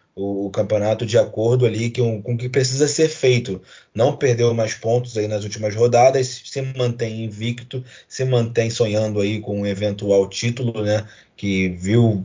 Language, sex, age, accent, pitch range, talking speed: Portuguese, male, 20-39, Brazilian, 100-115 Hz, 165 wpm